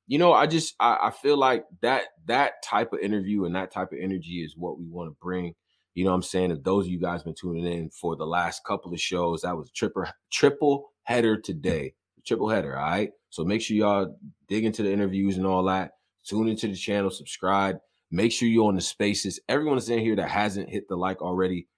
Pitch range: 90-145 Hz